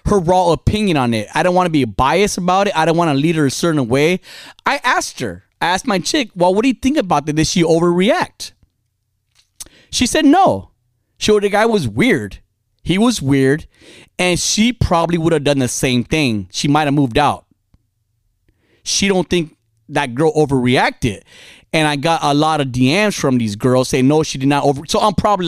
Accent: American